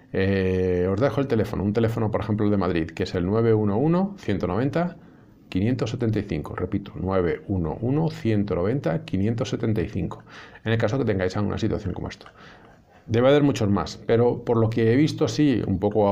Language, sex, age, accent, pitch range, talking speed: Spanish, male, 50-69, Spanish, 95-125 Hz, 170 wpm